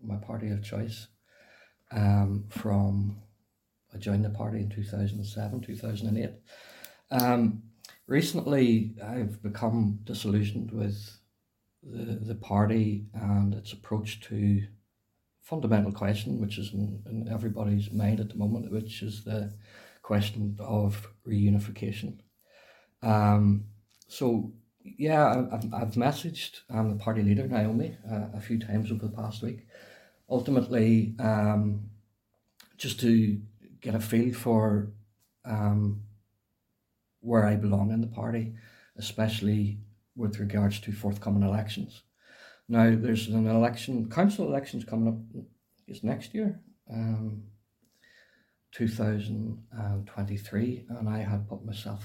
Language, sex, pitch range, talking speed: English, male, 105-115 Hz, 115 wpm